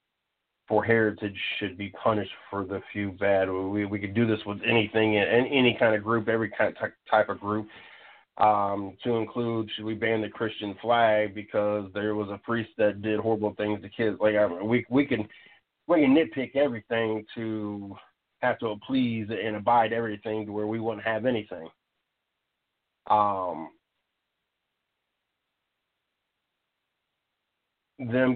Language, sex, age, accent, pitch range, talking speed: English, male, 40-59, American, 105-115 Hz, 150 wpm